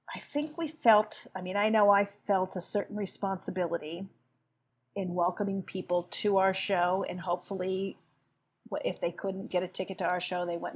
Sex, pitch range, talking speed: female, 165-195 Hz, 180 wpm